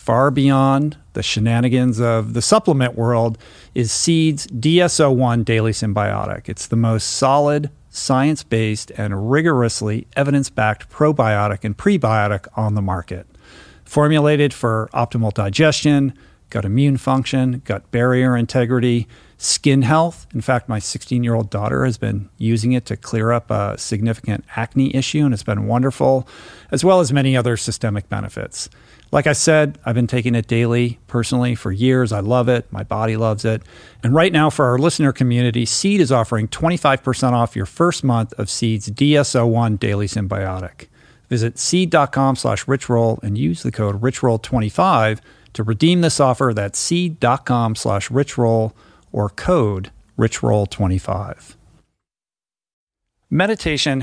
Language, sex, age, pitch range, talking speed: English, male, 50-69, 110-135 Hz, 140 wpm